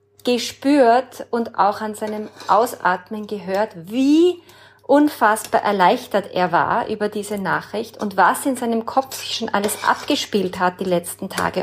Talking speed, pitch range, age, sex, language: 145 wpm, 195-245 Hz, 30-49, female, German